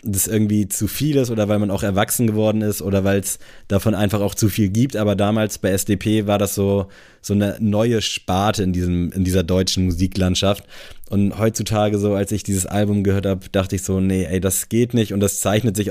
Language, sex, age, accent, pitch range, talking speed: German, male, 20-39, German, 90-105 Hz, 225 wpm